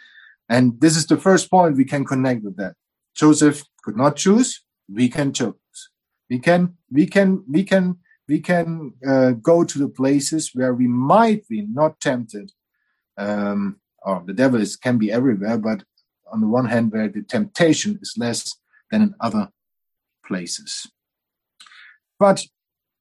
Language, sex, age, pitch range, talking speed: English, male, 50-69, 130-200 Hz, 155 wpm